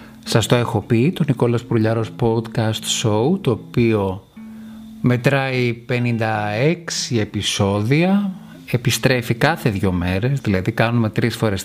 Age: 30-49